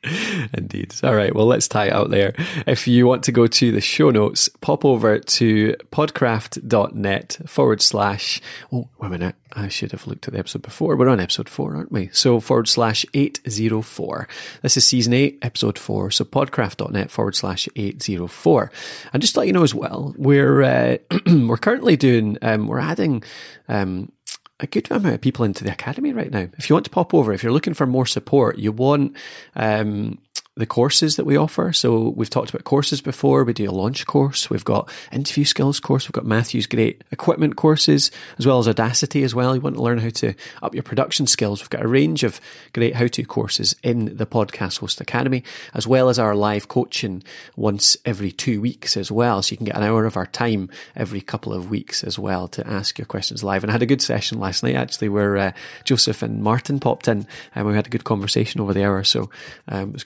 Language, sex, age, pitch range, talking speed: English, male, 20-39, 105-135 Hz, 215 wpm